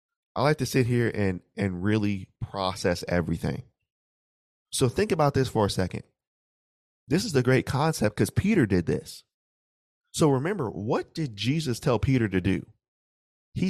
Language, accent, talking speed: English, American, 160 wpm